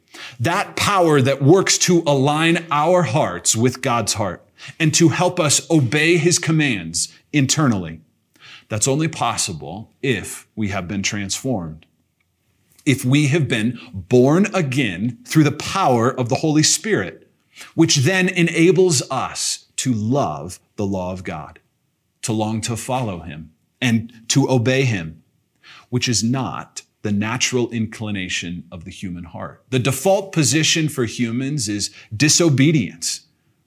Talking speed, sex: 135 wpm, male